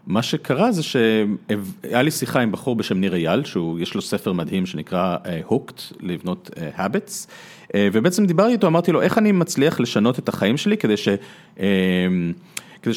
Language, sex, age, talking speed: Hebrew, male, 40-59, 160 wpm